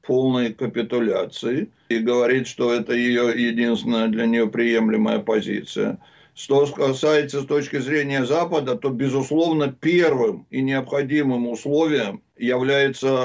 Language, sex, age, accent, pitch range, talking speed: Russian, male, 60-79, native, 135-165 Hz, 115 wpm